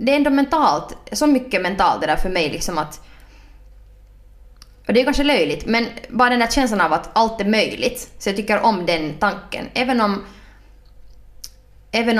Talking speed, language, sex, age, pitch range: 180 wpm, Swedish, female, 20-39, 160-210 Hz